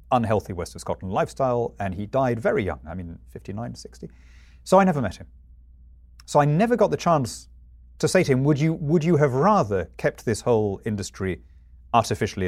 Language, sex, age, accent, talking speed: English, male, 40-59, British, 190 wpm